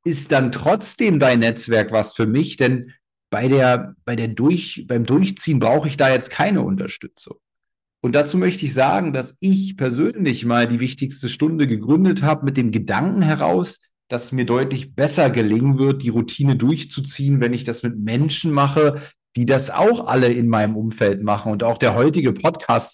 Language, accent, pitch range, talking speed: German, German, 120-155 Hz, 185 wpm